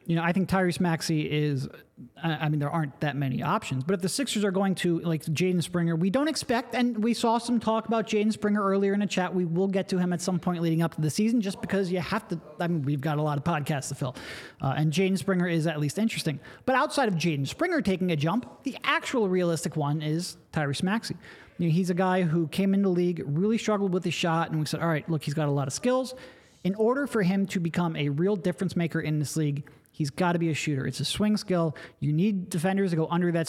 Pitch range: 155-195 Hz